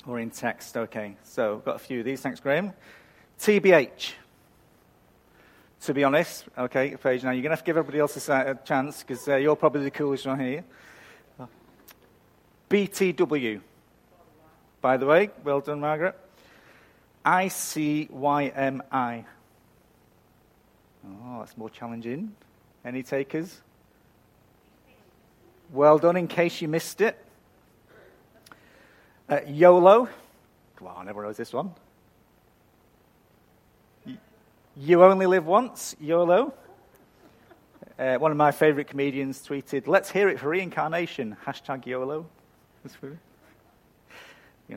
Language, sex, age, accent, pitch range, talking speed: English, male, 40-59, British, 130-170 Hz, 120 wpm